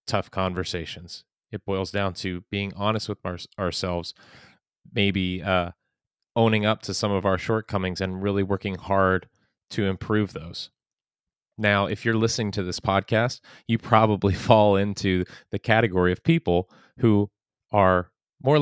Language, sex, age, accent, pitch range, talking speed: English, male, 30-49, American, 95-110 Hz, 145 wpm